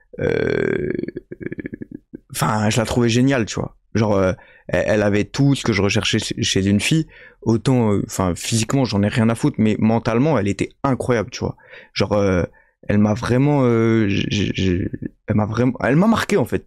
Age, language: 20-39, French